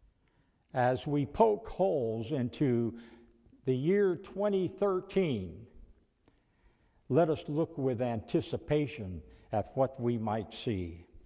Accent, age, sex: American, 60-79, male